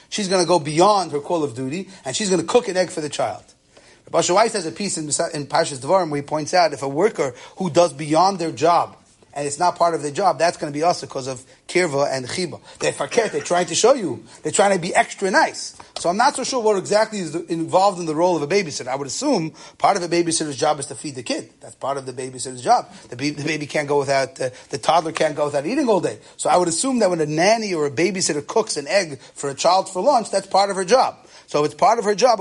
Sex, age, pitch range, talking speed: male, 30-49, 150-195 Hz, 275 wpm